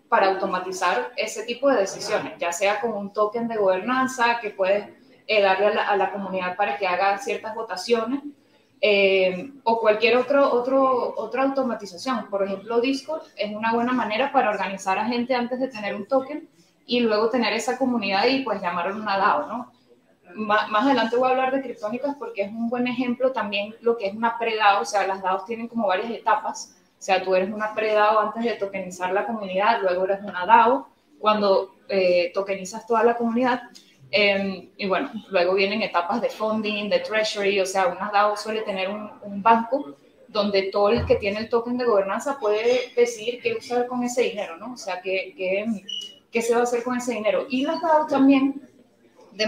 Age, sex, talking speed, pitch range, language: 10-29, female, 195 wpm, 195-250 Hz, Spanish